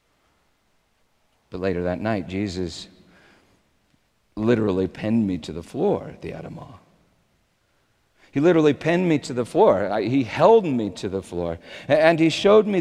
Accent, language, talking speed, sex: American, English, 145 wpm, male